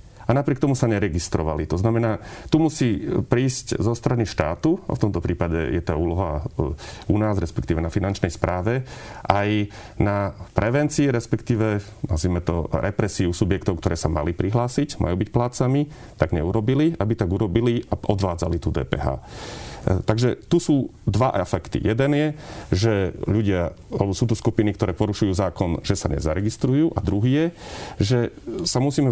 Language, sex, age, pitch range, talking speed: Slovak, male, 40-59, 90-120 Hz, 150 wpm